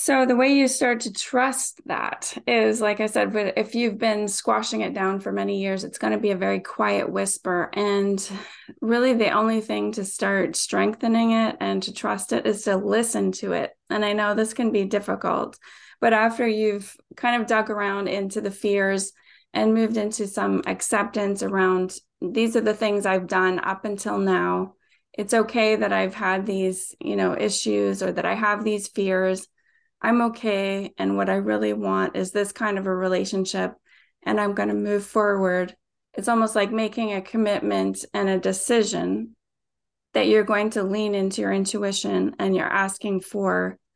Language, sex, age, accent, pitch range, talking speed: English, female, 20-39, American, 190-220 Hz, 185 wpm